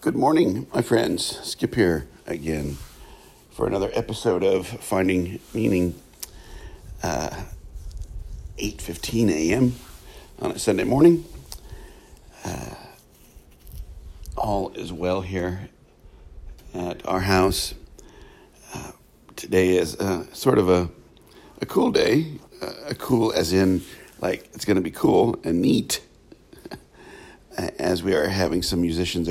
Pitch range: 80-95 Hz